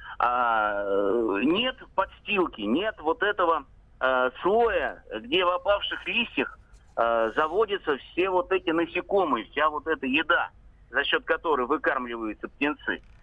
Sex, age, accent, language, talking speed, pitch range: male, 50-69, native, Russian, 125 wpm, 145-225 Hz